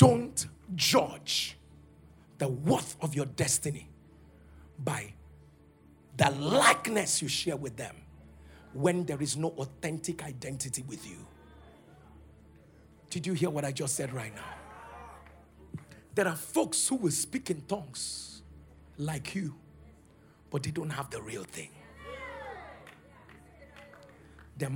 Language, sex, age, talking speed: English, male, 50-69, 120 wpm